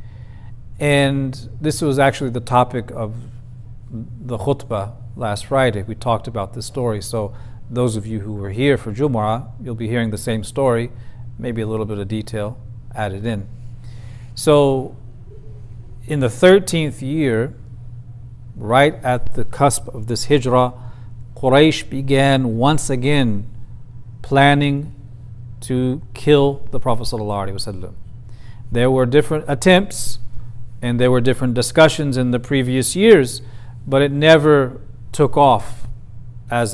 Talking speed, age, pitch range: 130 wpm, 40-59, 115-130 Hz